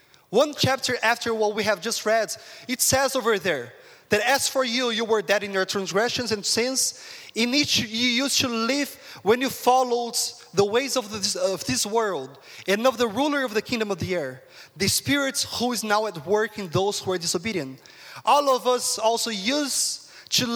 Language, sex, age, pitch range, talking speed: English, male, 20-39, 205-245 Hz, 195 wpm